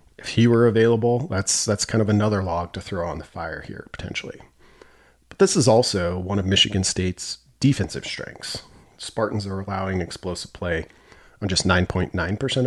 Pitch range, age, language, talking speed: 85-105 Hz, 40-59, English, 165 wpm